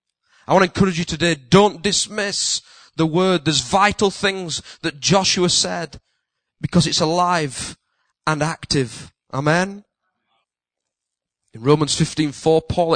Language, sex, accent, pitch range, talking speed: English, male, British, 140-180 Hz, 120 wpm